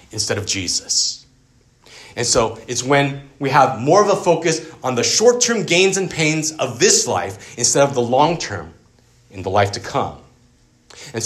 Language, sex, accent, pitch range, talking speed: English, male, American, 110-145 Hz, 170 wpm